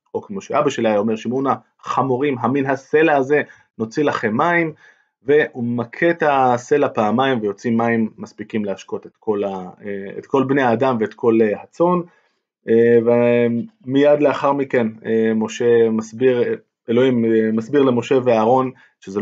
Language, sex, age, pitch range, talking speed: Hebrew, male, 20-39, 110-140 Hz, 135 wpm